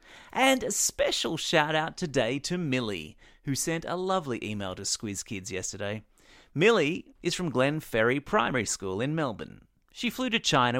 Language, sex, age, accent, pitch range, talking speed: English, male, 30-49, Australian, 120-180 Hz, 165 wpm